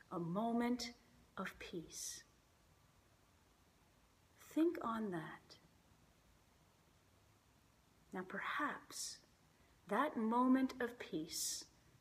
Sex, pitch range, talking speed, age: female, 185-270 Hz, 65 wpm, 40-59